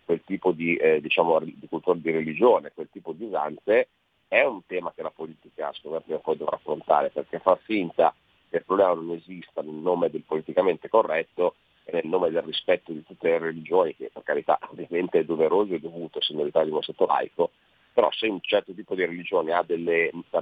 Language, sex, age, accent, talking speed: Italian, male, 40-59, native, 200 wpm